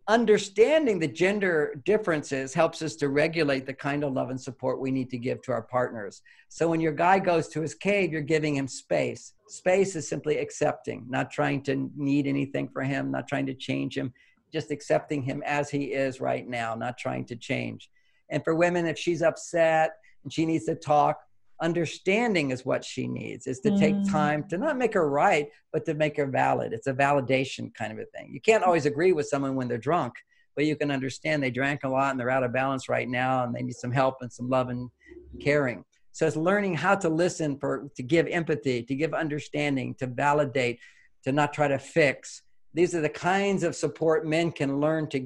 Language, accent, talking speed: English, American, 215 wpm